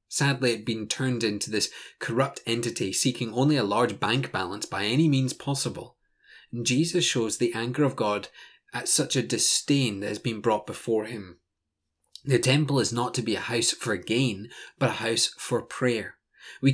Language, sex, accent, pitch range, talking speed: English, male, British, 110-135 Hz, 180 wpm